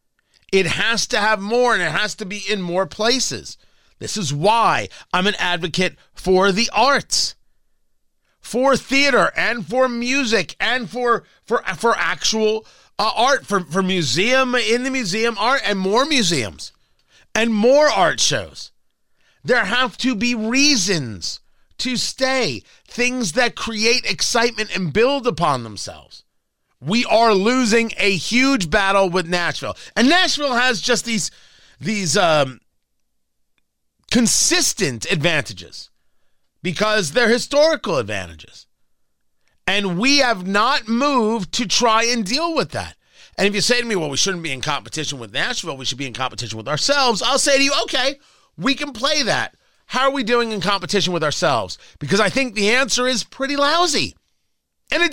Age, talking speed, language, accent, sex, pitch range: 30-49, 155 wpm, English, American, male, 180-255 Hz